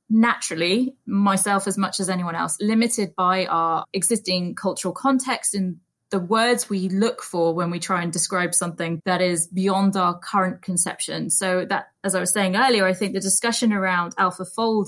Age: 20-39